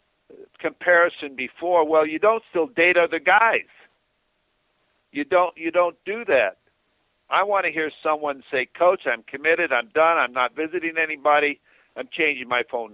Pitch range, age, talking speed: 145-185 Hz, 60-79, 160 wpm